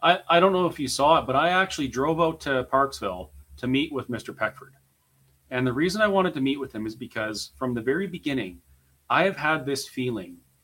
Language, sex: English, male